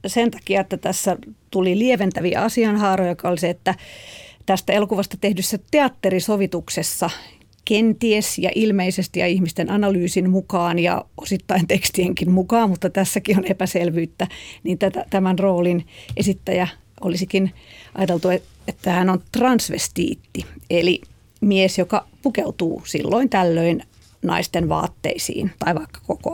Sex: female